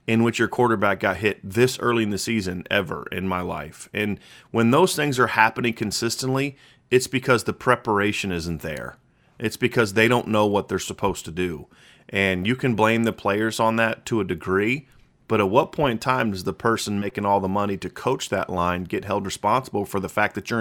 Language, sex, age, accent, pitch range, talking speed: English, male, 30-49, American, 100-125 Hz, 215 wpm